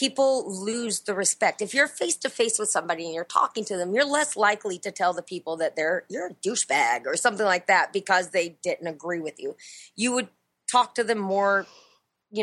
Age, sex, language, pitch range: 20-39, female, English, 170-230 Hz